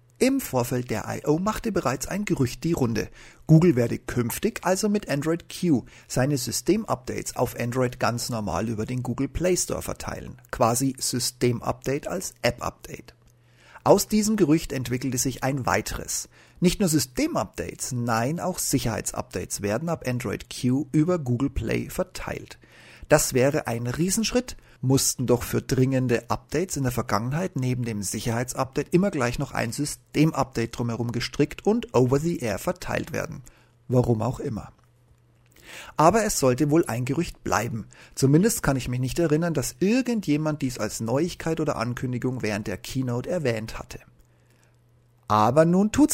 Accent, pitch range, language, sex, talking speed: German, 120-160 Hz, German, male, 145 wpm